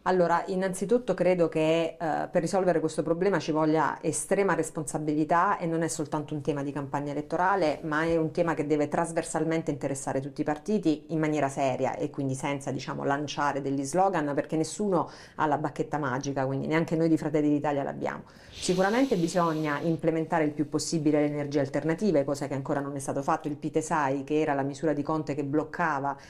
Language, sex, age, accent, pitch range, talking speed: Italian, female, 40-59, native, 145-170 Hz, 185 wpm